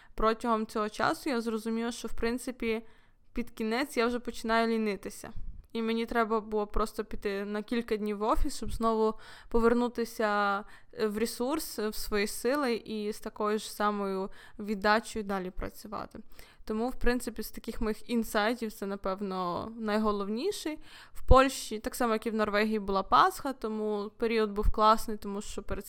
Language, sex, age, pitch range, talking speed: Ukrainian, female, 20-39, 210-240 Hz, 160 wpm